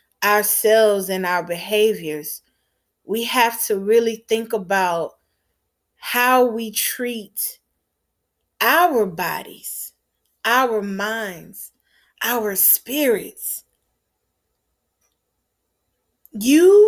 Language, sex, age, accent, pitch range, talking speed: English, female, 20-39, American, 215-275 Hz, 70 wpm